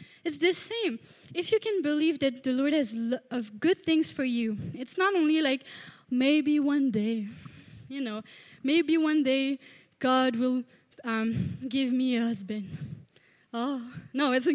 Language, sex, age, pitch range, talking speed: English, female, 20-39, 255-345 Hz, 160 wpm